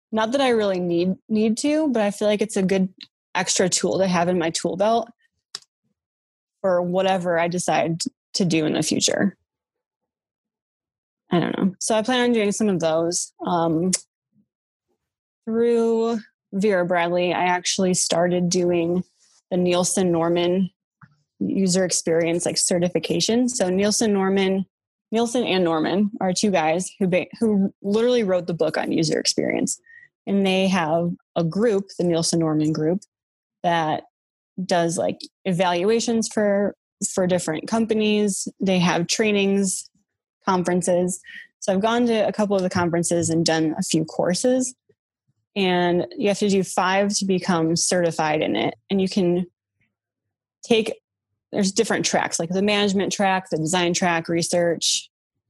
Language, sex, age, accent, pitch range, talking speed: English, female, 20-39, American, 170-210 Hz, 150 wpm